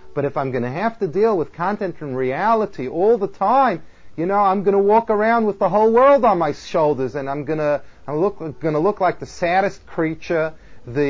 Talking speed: 230 wpm